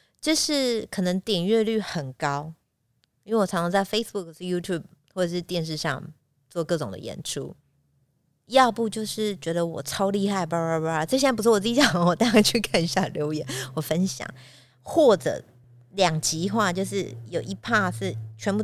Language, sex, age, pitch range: Chinese, female, 30-49, 145-190 Hz